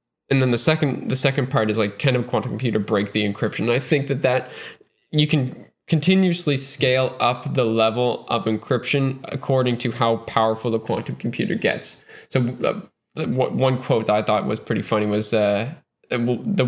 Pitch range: 110-135 Hz